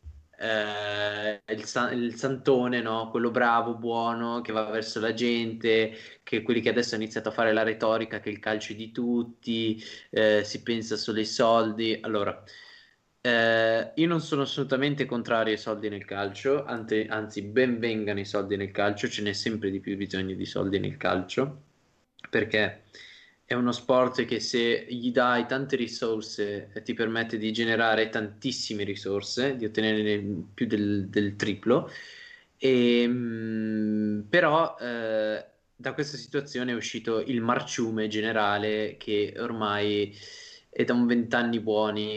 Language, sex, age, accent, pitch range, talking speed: Italian, male, 20-39, native, 105-120 Hz, 145 wpm